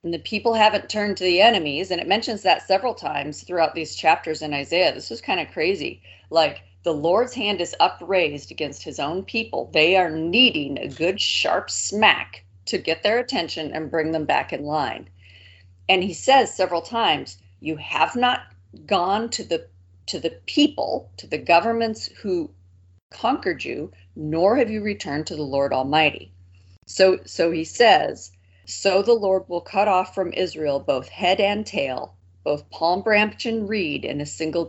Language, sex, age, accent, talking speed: English, female, 40-59, American, 180 wpm